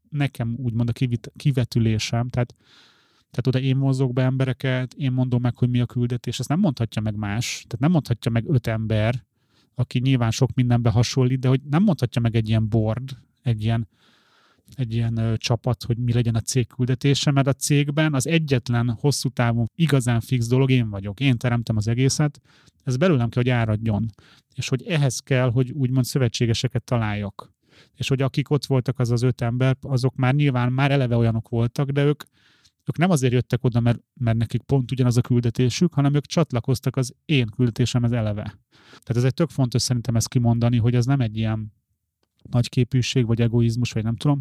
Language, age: Hungarian, 30-49